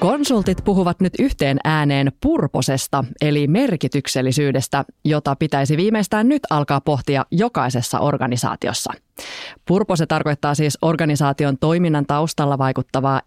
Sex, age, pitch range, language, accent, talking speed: female, 20-39, 135-165 Hz, Finnish, native, 105 wpm